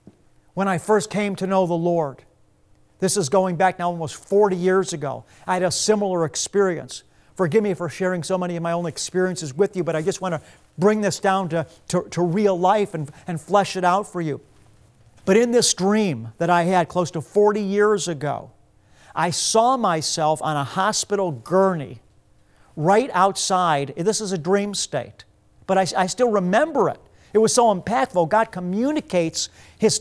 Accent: American